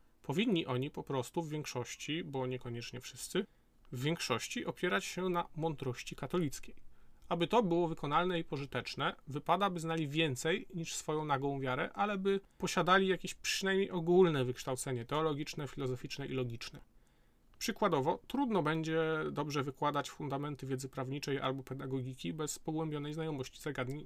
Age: 40-59